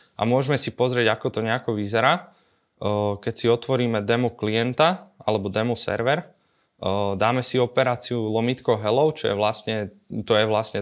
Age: 20-39